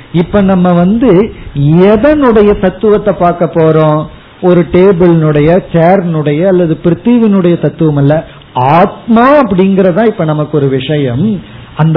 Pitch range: 155-210 Hz